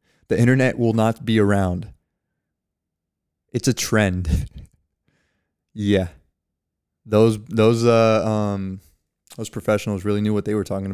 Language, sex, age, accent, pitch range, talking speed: English, male, 20-39, American, 100-130 Hz, 120 wpm